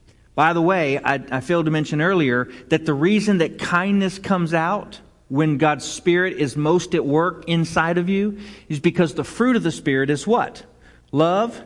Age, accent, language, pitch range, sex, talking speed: 40-59, American, English, 140-190 Hz, male, 185 wpm